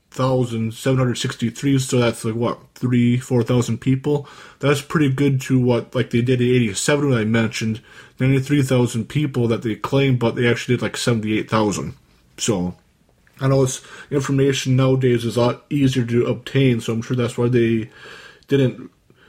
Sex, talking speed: male, 170 wpm